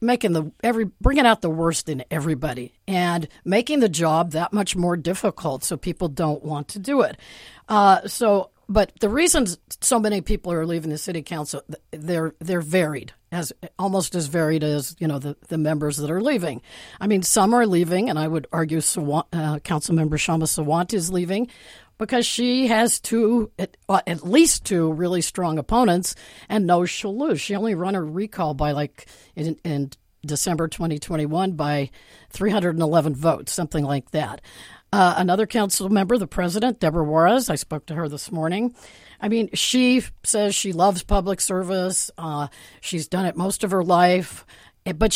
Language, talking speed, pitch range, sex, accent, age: English, 180 wpm, 160-205 Hz, female, American, 50-69